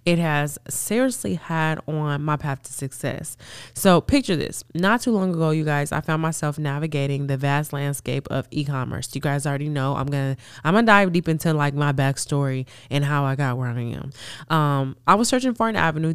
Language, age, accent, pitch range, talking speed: English, 20-39, American, 140-175 Hz, 205 wpm